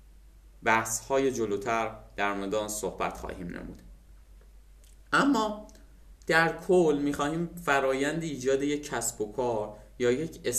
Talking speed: 115 wpm